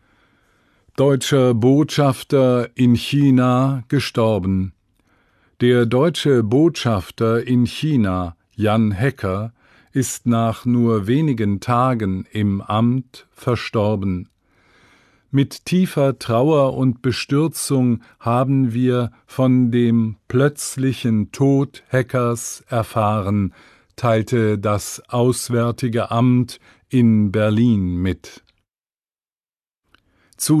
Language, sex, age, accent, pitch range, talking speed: English, male, 50-69, German, 105-130 Hz, 80 wpm